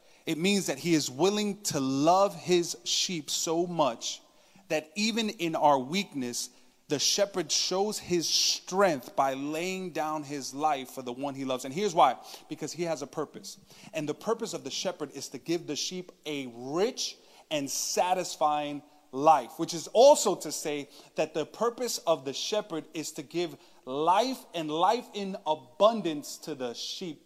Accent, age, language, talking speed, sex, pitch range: American, 30-49, English, 170 wpm, male, 145-185 Hz